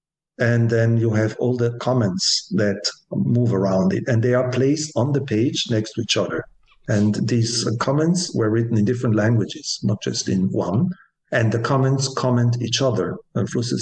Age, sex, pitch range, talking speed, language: 50-69, male, 105-125 Hz, 180 wpm, English